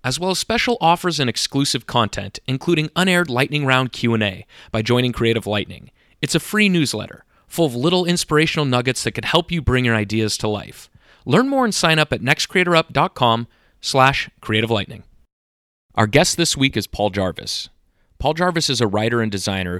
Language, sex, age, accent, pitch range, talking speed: English, male, 30-49, American, 105-135 Hz, 175 wpm